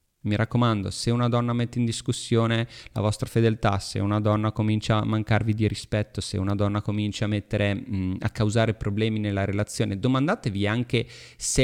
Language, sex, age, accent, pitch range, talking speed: Italian, male, 30-49, native, 105-130 Hz, 170 wpm